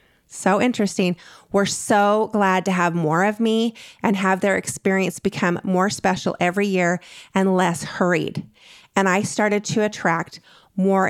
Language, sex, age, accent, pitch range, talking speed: English, female, 30-49, American, 175-205 Hz, 150 wpm